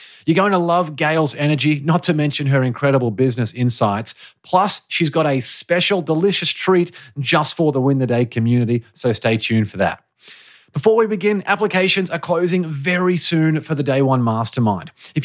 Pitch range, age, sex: 130-170 Hz, 30-49, male